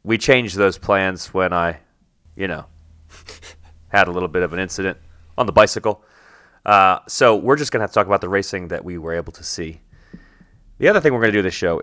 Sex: male